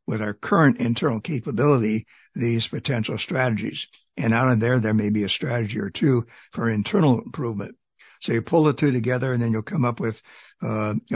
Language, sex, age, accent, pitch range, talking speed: English, male, 60-79, American, 115-140 Hz, 190 wpm